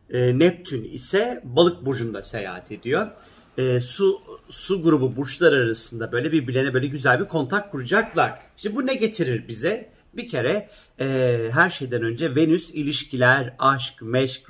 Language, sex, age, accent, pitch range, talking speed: Turkish, male, 50-69, native, 130-160 Hz, 150 wpm